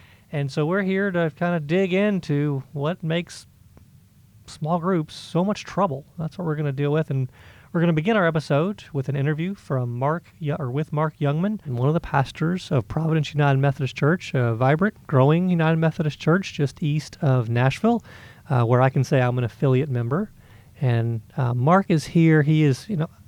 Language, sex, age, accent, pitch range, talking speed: English, male, 30-49, American, 125-160 Hz, 200 wpm